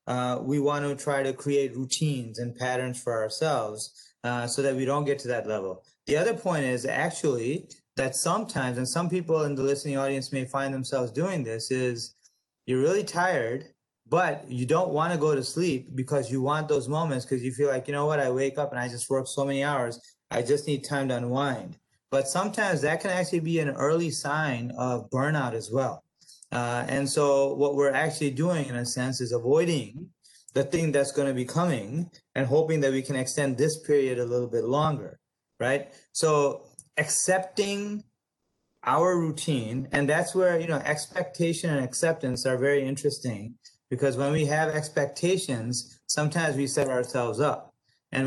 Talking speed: 190 wpm